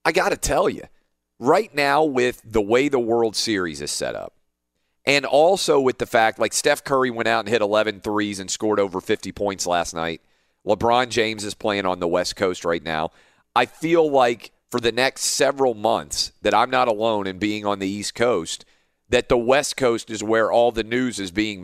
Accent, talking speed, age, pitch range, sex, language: American, 210 wpm, 40-59, 95-125 Hz, male, English